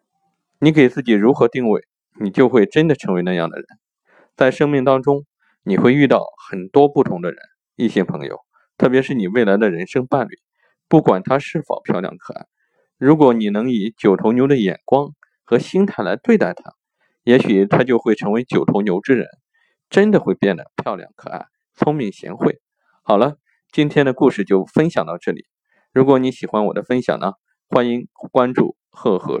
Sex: male